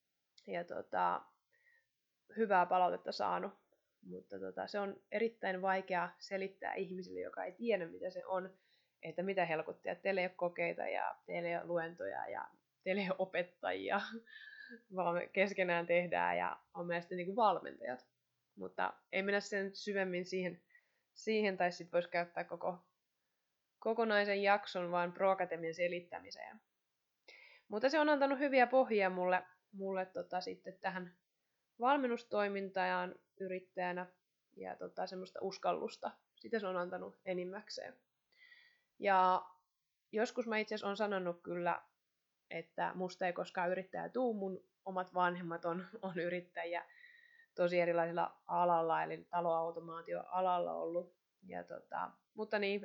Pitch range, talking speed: 175-205 Hz, 115 wpm